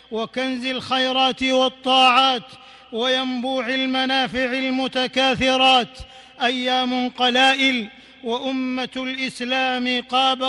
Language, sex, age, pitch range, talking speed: Arabic, male, 50-69, 245-265 Hz, 65 wpm